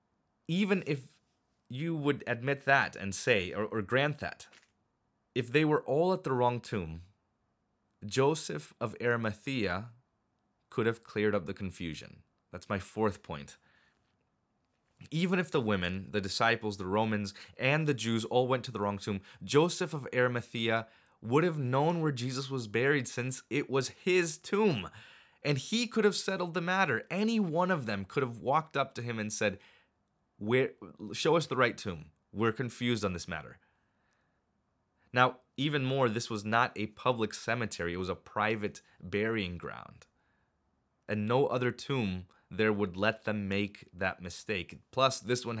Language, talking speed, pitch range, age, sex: English, 165 wpm, 100-135 Hz, 20-39, male